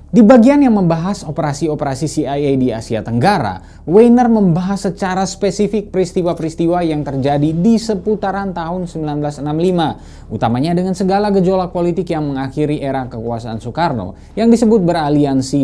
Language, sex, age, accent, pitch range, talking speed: Indonesian, male, 20-39, native, 135-200 Hz, 125 wpm